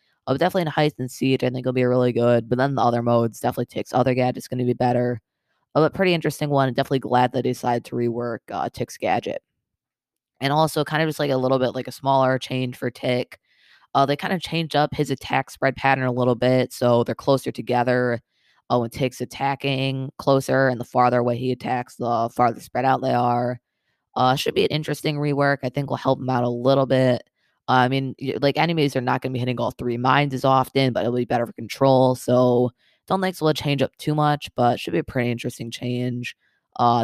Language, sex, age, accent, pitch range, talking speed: English, female, 20-39, American, 125-140 Hz, 235 wpm